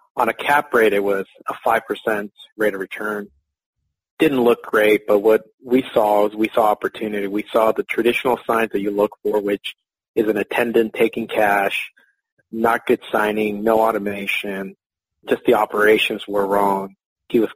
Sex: male